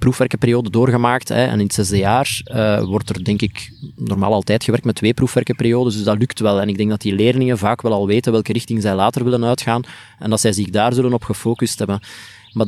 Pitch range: 105-130 Hz